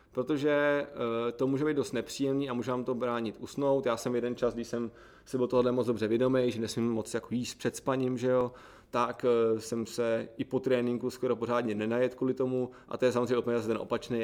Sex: male